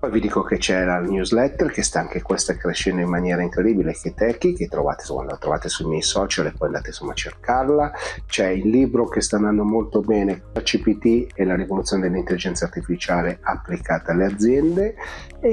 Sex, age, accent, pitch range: male, 40-59, native, 90-110 Hz